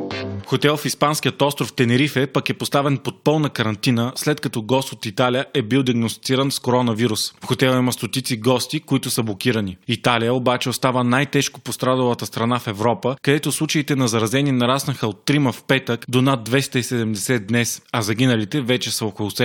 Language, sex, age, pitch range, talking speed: Bulgarian, male, 20-39, 115-135 Hz, 170 wpm